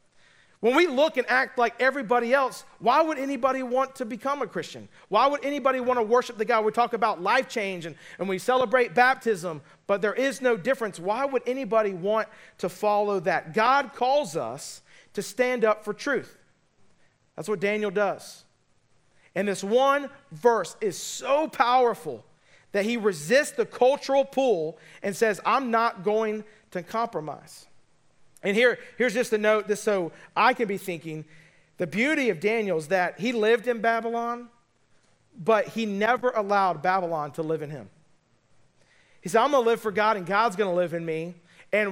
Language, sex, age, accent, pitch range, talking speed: English, male, 40-59, American, 190-250 Hz, 180 wpm